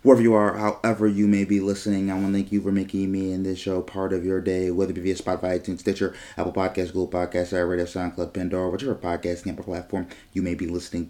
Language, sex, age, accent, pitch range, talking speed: English, male, 30-49, American, 90-105 Hz, 245 wpm